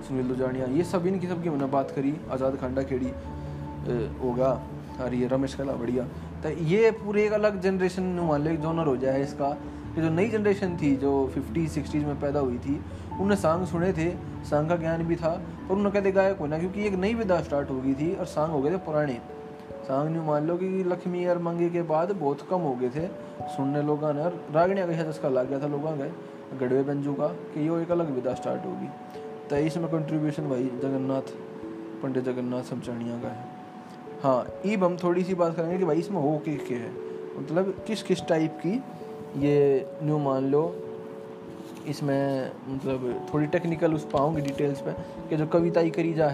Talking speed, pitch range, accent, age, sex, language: 195 wpm, 135-170 Hz, native, 20-39, male, Hindi